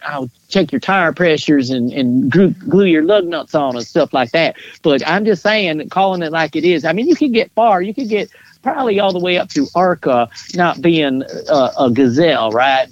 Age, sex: 50-69, male